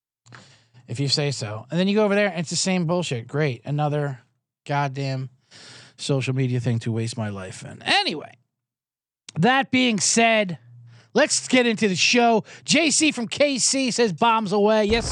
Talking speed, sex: 165 wpm, male